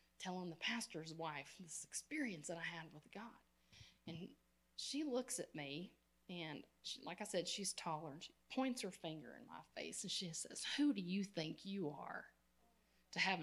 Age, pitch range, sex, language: 30-49, 175-240 Hz, female, English